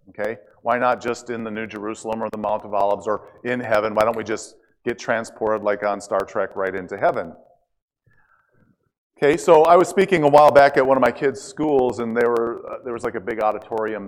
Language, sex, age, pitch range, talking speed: English, male, 40-59, 115-175 Hz, 225 wpm